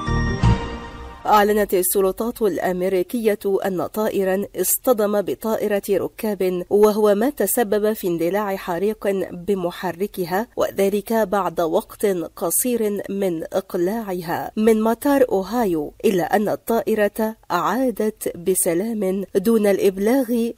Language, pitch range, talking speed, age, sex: Arabic, 175-215 Hz, 90 wpm, 40-59, female